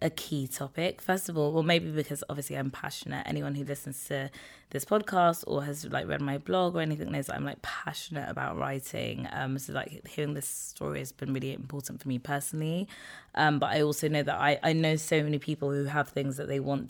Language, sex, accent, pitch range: English, female, British, 135-155 Hz